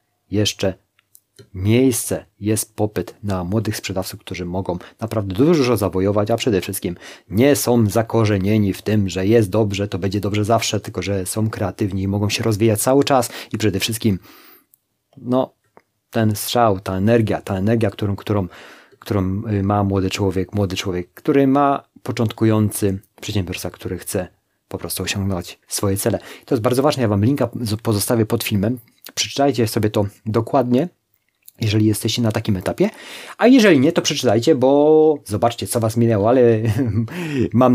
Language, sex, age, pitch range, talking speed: Polish, male, 30-49, 100-115 Hz, 155 wpm